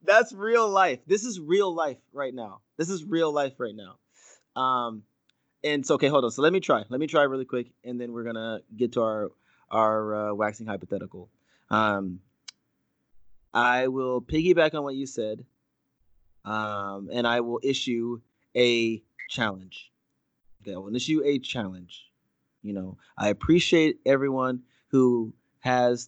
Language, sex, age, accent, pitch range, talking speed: English, male, 20-39, American, 105-135 Hz, 160 wpm